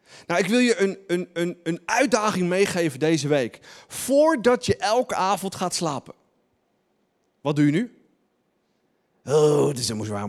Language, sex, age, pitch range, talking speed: Dutch, male, 40-59, 115-185 Hz, 155 wpm